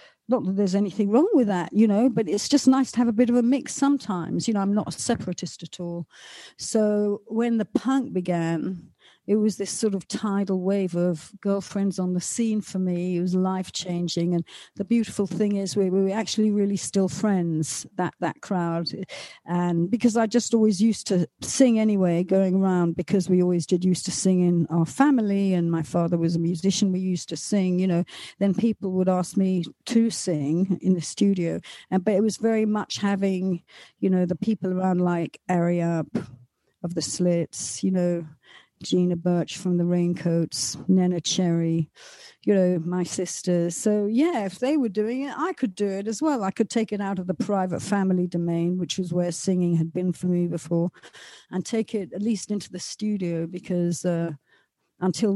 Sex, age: female, 50-69